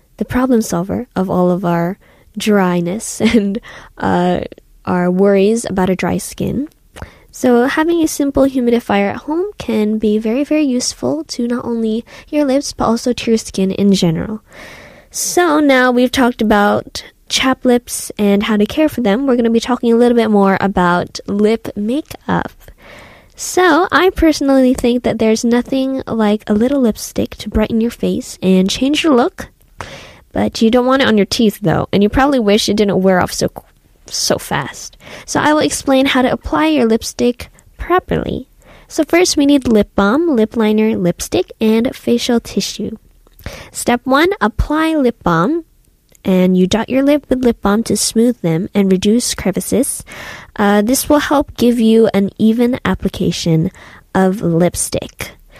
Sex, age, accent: female, 10-29, American